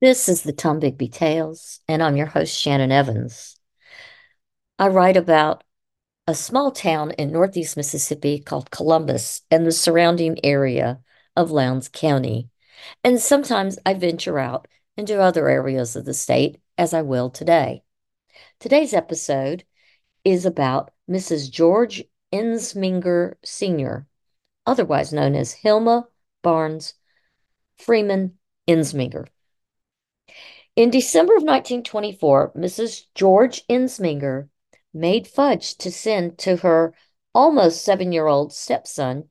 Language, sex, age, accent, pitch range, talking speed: English, female, 50-69, American, 155-205 Hz, 115 wpm